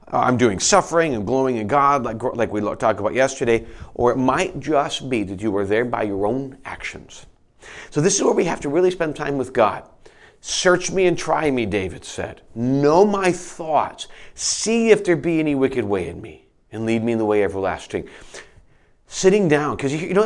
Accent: American